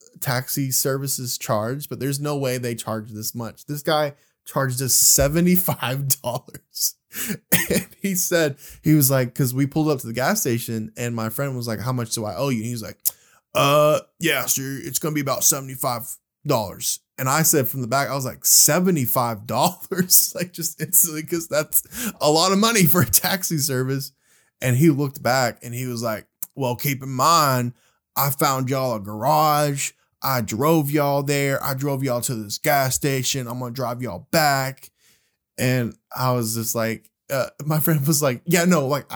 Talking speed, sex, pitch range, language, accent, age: 185 wpm, male, 120-150 Hz, English, American, 10-29